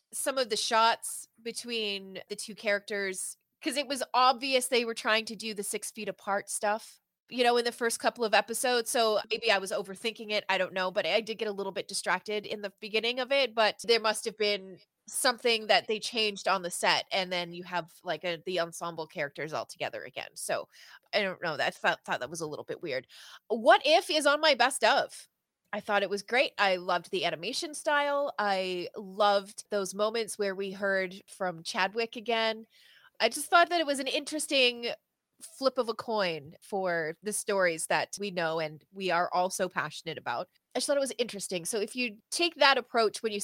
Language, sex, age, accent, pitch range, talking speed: English, female, 20-39, American, 190-240 Hz, 215 wpm